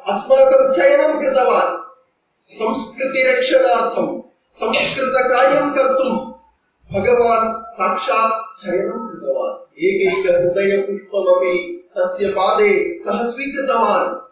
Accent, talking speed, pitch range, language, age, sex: native, 45 wpm, 200-270 Hz, Tamil, 30-49, male